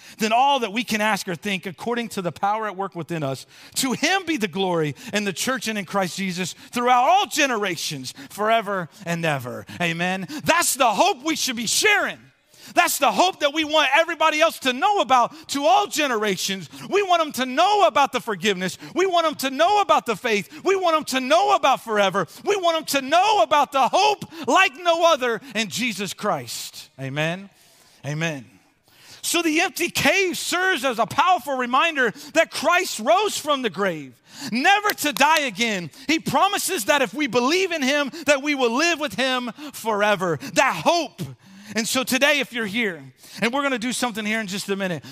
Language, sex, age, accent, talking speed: English, male, 40-59, American, 195 wpm